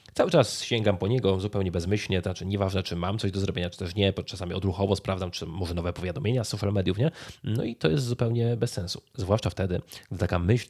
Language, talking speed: Polish, 225 wpm